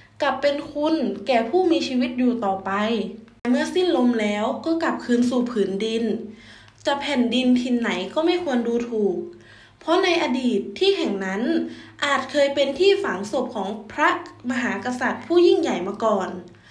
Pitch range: 230-325 Hz